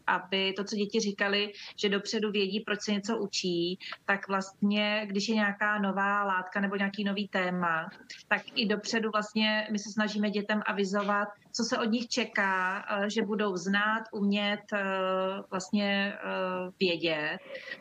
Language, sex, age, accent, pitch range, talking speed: Czech, female, 30-49, native, 185-215 Hz, 145 wpm